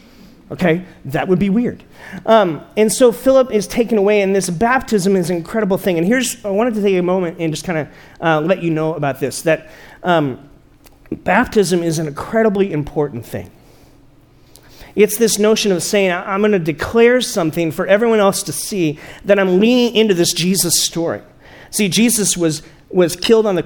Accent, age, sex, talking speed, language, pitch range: American, 40-59, male, 185 wpm, English, 155-205 Hz